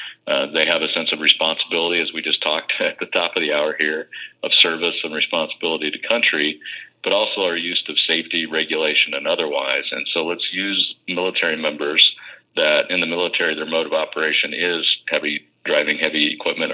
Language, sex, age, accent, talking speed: English, male, 40-59, American, 185 wpm